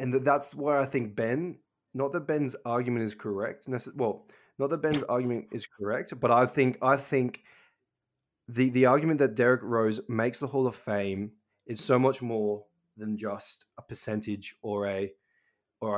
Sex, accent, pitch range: male, Australian, 110-135 Hz